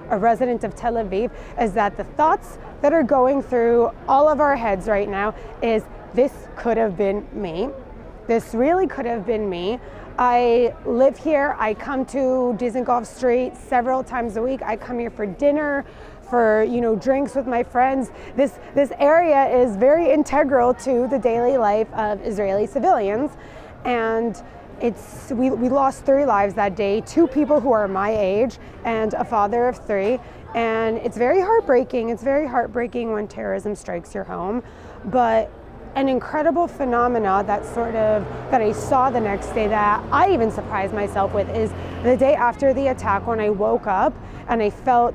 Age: 20-39